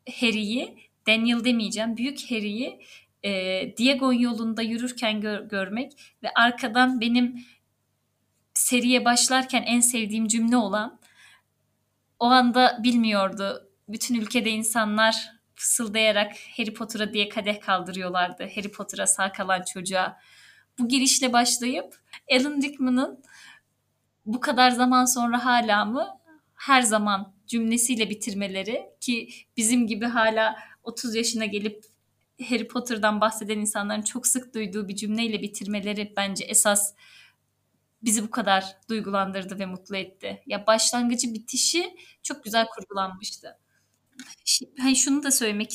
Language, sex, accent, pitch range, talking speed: Turkish, female, native, 210-245 Hz, 110 wpm